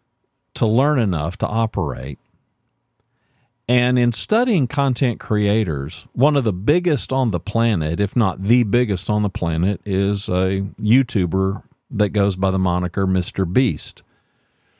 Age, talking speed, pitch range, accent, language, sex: 50-69, 140 wpm, 85-120 Hz, American, English, male